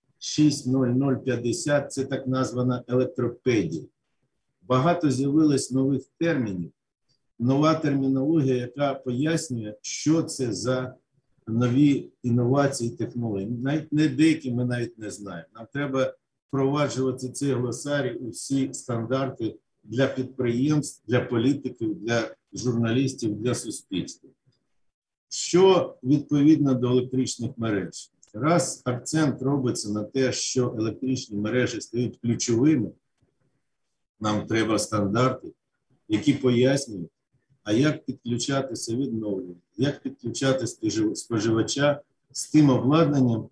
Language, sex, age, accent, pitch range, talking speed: Ukrainian, male, 50-69, native, 120-145 Hz, 100 wpm